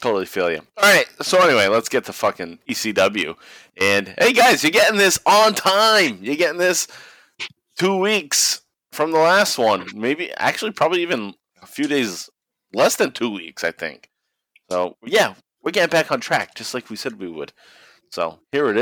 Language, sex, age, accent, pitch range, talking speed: English, male, 30-49, American, 100-170 Hz, 180 wpm